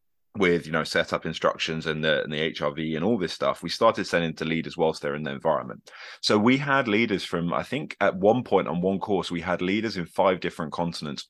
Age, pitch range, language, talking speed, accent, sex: 30-49, 80-95 Hz, Romanian, 240 wpm, British, male